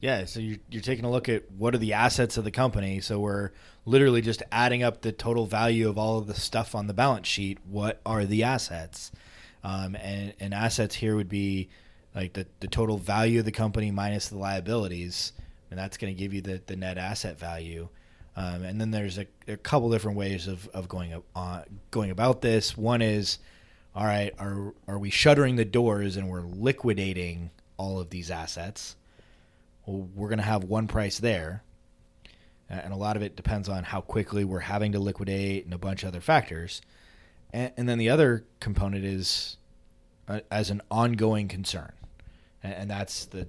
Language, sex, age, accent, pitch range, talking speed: English, male, 20-39, American, 95-110 Hz, 195 wpm